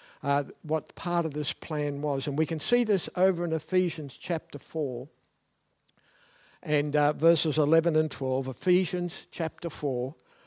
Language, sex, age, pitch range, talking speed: English, male, 60-79, 155-190 Hz, 150 wpm